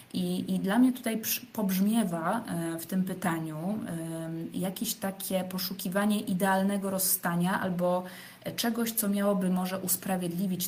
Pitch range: 170-205 Hz